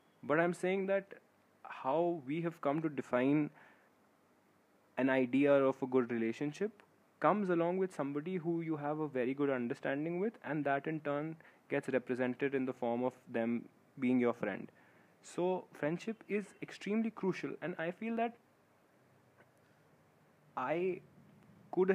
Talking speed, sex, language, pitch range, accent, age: 145 wpm, male, English, 135-180 Hz, Indian, 20-39